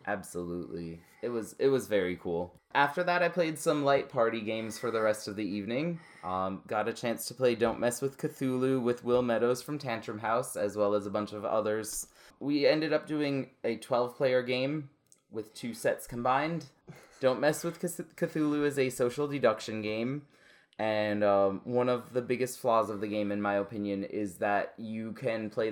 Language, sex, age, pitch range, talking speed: English, male, 20-39, 100-130 Hz, 195 wpm